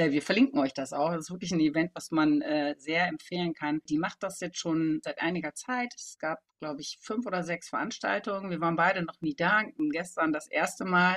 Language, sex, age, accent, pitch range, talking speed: German, female, 40-59, German, 155-210 Hz, 230 wpm